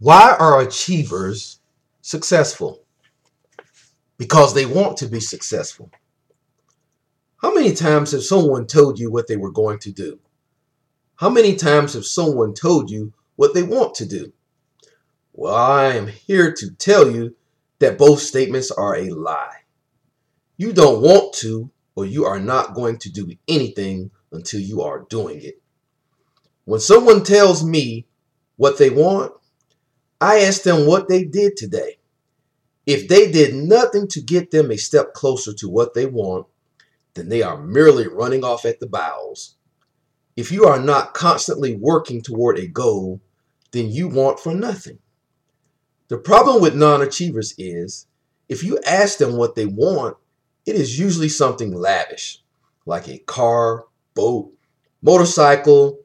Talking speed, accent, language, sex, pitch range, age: 150 wpm, American, English, male, 120-170 Hz, 40-59